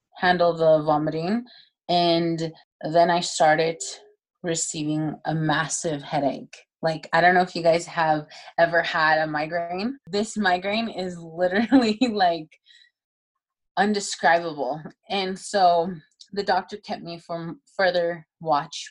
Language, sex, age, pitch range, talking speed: English, female, 20-39, 160-185 Hz, 120 wpm